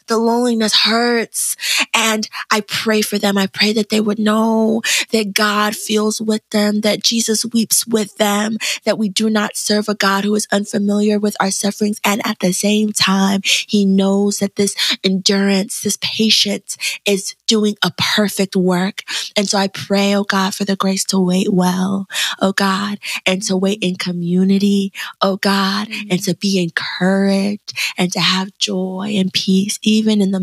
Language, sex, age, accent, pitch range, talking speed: English, female, 20-39, American, 180-205 Hz, 175 wpm